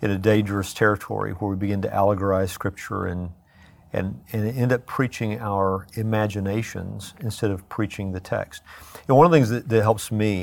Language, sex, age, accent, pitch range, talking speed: English, male, 50-69, American, 95-110 Hz, 185 wpm